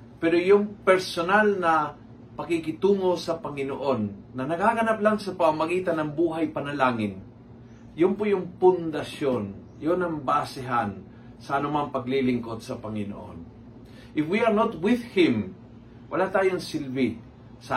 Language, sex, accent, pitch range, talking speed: Filipino, male, native, 120-165 Hz, 125 wpm